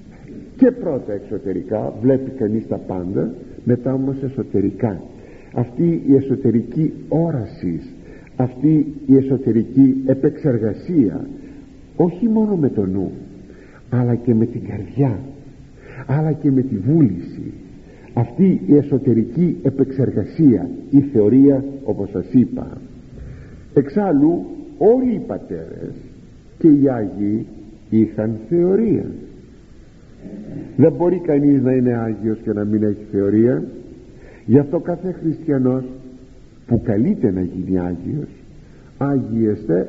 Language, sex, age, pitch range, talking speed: Greek, male, 50-69, 110-145 Hz, 110 wpm